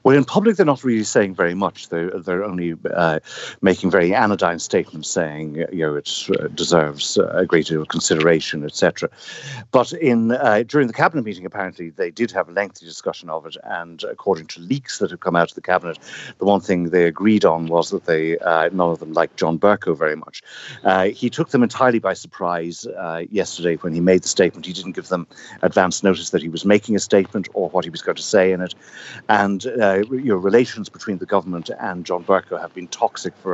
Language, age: English, 60-79